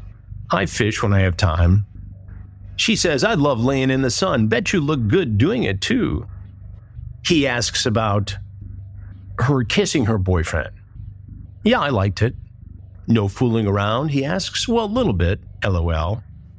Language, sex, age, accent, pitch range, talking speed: English, male, 50-69, American, 95-115 Hz, 150 wpm